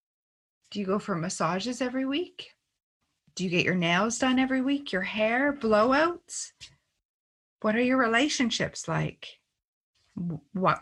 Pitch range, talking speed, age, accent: 195-250 Hz, 135 wpm, 30-49, American